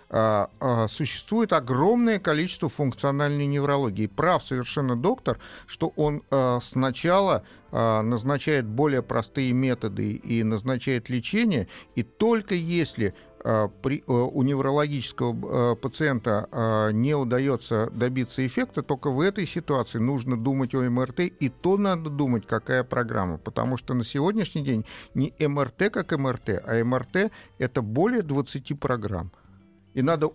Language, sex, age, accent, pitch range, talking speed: Russian, male, 50-69, native, 110-145 Hz, 115 wpm